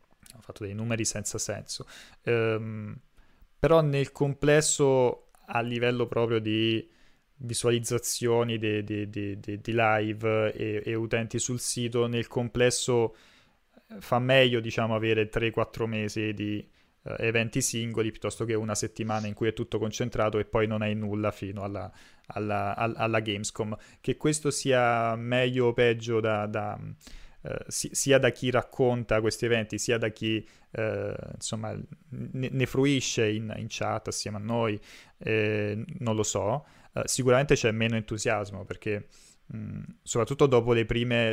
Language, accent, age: Italian, native, 20-39